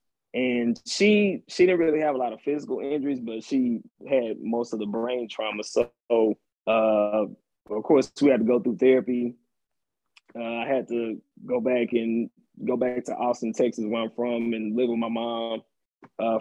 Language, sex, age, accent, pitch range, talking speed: English, male, 20-39, American, 115-130 Hz, 185 wpm